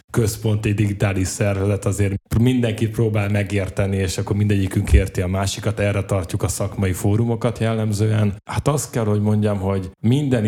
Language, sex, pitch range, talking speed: Hungarian, male, 100-120 Hz, 150 wpm